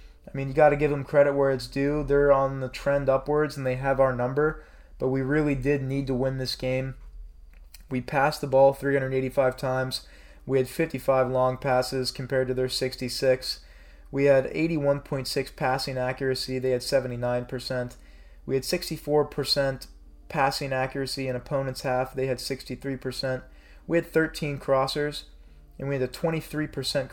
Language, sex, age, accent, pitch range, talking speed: English, male, 20-39, American, 130-140 Hz, 160 wpm